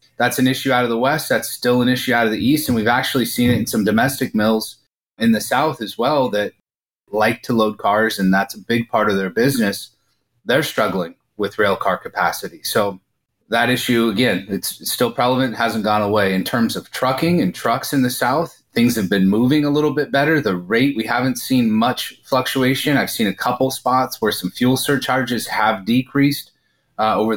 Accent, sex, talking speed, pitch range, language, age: American, male, 210 wpm, 105-130 Hz, English, 30-49